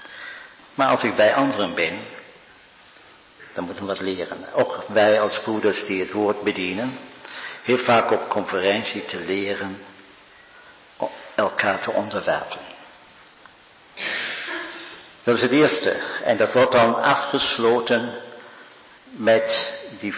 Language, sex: Dutch, male